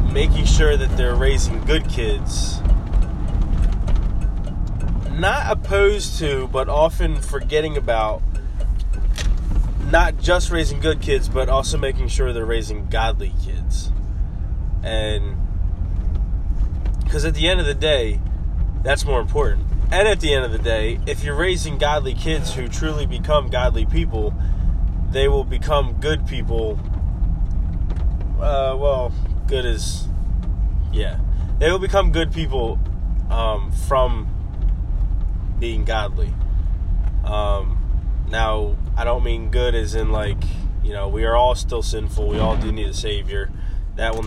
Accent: American